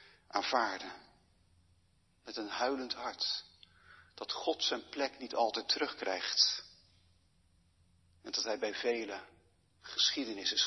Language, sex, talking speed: Dutch, male, 105 wpm